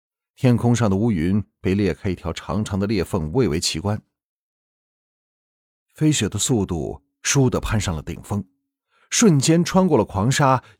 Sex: male